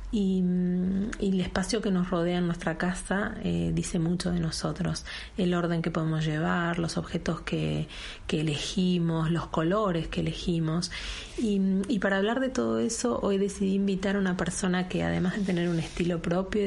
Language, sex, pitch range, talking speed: Spanish, female, 165-190 Hz, 175 wpm